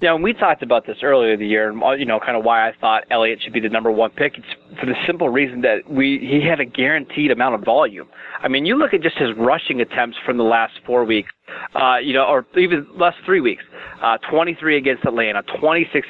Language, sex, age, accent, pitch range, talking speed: English, male, 30-49, American, 115-140 Hz, 240 wpm